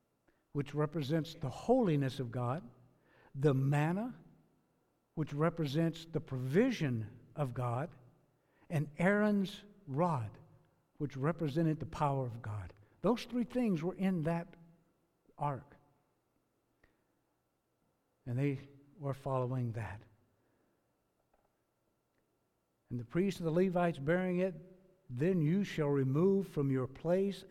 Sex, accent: male, American